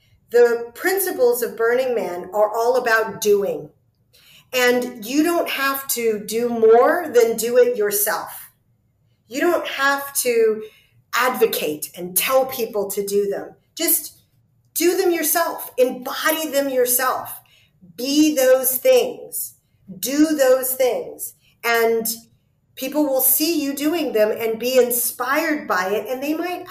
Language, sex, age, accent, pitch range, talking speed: English, female, 40-59, American, 225-315 Hz, 135 wpm